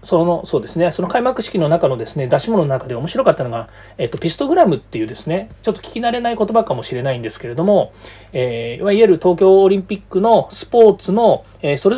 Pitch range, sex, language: 125-200 Hz, male, Japanese